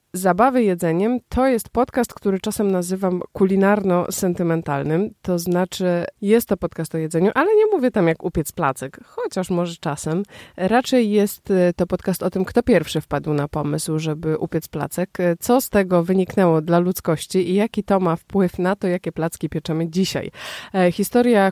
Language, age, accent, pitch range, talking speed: Polish, 20-39, native, 165-205 Hz, 160 wpm